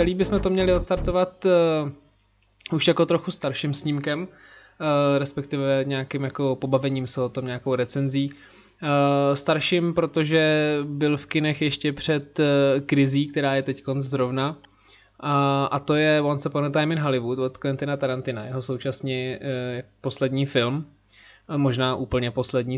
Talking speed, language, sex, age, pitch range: 150 wpm, Czech, male, 20-39, 135-155 Hz